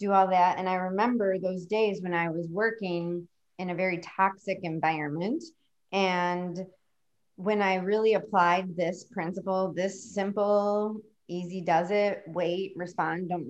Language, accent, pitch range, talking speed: English, American, 180-215 Hz, 140 wpm